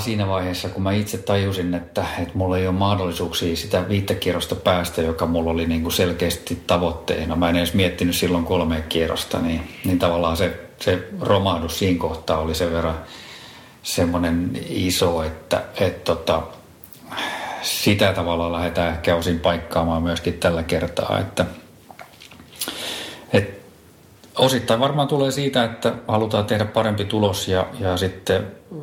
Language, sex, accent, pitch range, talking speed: Finnish, male, native, 85-100 Hz, 140 wpm